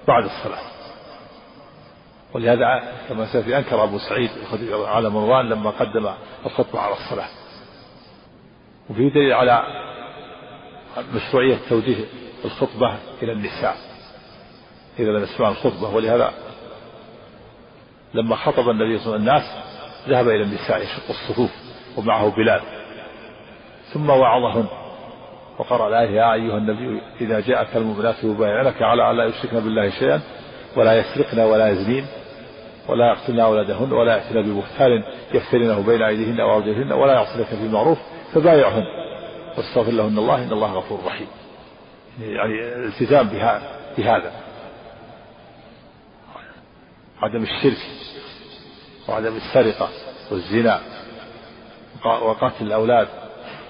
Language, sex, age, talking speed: Arabic, male, 50-69, 110 wpm